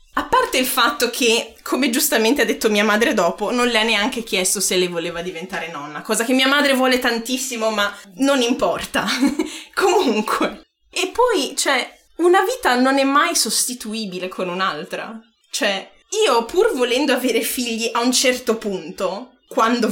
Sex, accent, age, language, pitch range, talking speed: female, native, 20-39, Italian, 225-315 Hz, 165 wpm